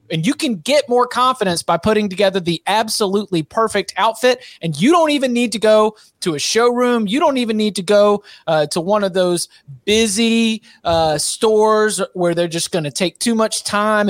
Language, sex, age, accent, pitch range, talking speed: English, male, 30-49, American, 180-230 Hz, 195 wpm